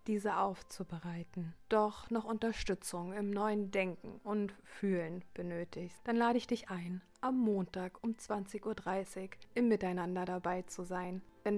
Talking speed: 140 wpm